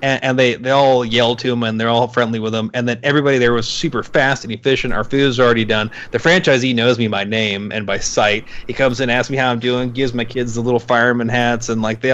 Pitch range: 120-140 Hz